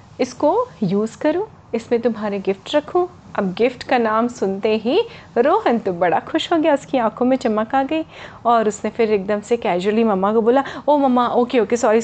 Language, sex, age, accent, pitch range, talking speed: Hindi, female, 30-49, native, 210-280 Hz, 195 wpm